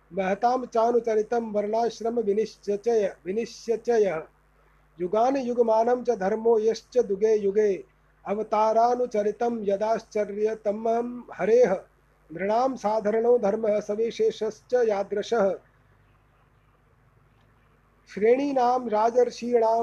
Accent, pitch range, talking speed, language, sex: native, 205-235 Hz, 60 wpm, Hindi, male